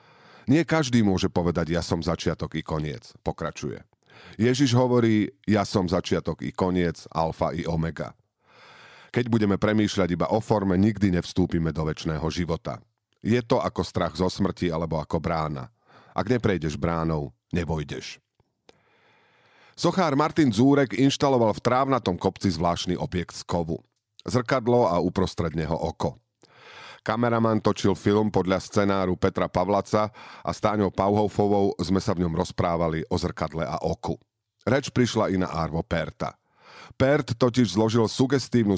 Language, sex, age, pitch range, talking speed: Slovak, male, 40-59, 85-110 Hz, 135 wpm